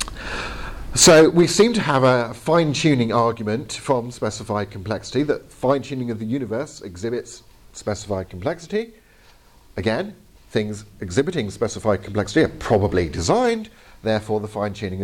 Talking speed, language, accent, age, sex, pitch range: 120 wpm, English, British, 50-69, male, 105-160 Hz